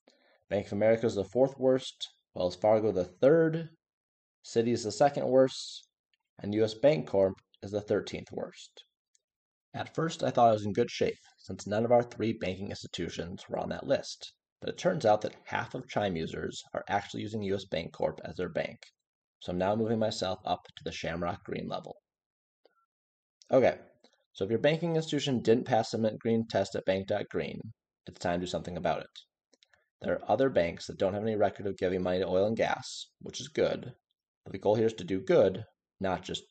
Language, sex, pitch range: English, male, 95-120 Hz